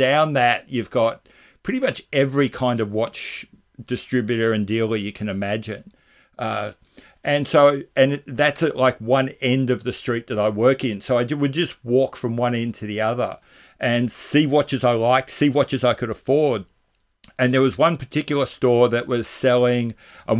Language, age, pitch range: English, 50-69, 115-130 Hz